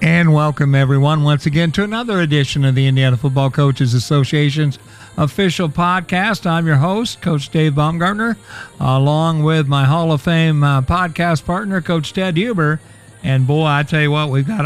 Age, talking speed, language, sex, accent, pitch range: 50-69, 170 wpm, English, male, American, 135-170 Hz